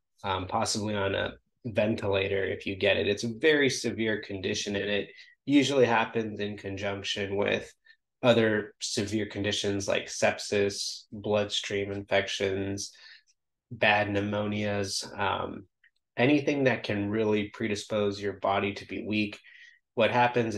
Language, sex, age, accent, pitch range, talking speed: English, male, 20-39, American, 100-115 Hz, 125 wpm